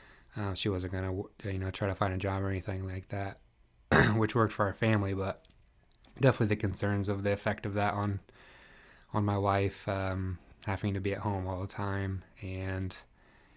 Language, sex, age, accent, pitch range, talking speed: English, male, 20-39, American, 95-100 Hz, 190 wpm